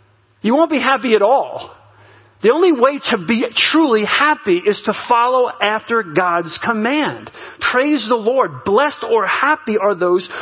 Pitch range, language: 180-255 Hz, English